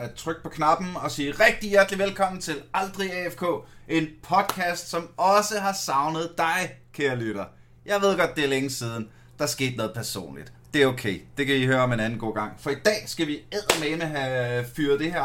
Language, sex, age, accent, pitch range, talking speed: Danish, male, 30-49, native, 125-185 Hz, 220 wpm